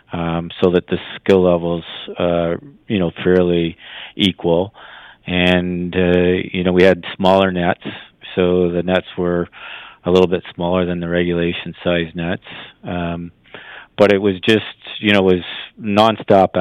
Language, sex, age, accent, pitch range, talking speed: English, male, 40-59, American, 90-95 Hz, 155 wpm